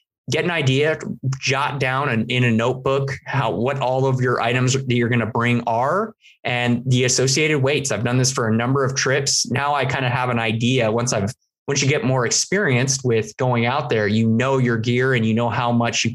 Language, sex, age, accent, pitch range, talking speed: English, male, 20-39, American, 110-135 Hz, 225 wpm